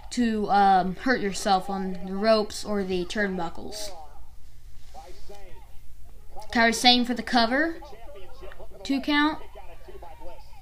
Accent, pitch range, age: American, 210-285 Hz, 20-39